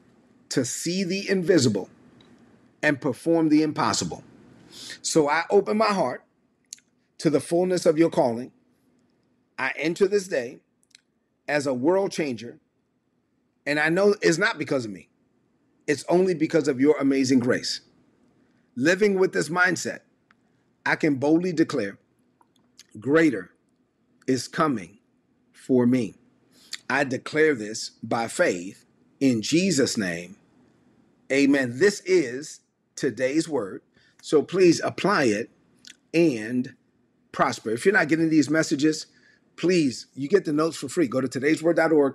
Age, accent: 40-59, American